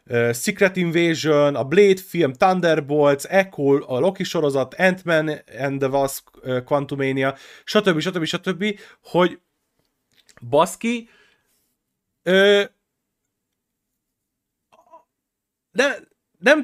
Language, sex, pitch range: Hungarian, male, 130-180 Hz